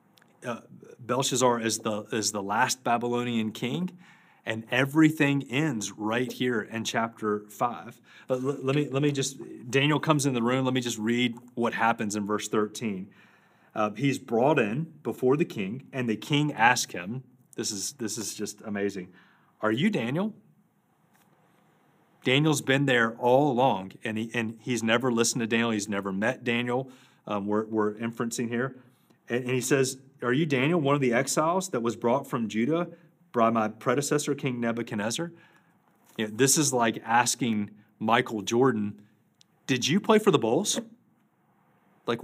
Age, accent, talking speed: 30-49, American, 165 wpm